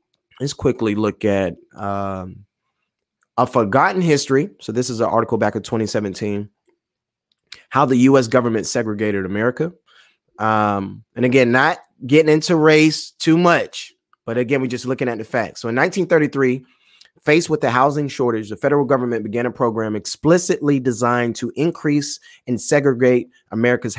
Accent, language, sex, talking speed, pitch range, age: American, English, male, 150 wpm, 115-145 Hz, 30-49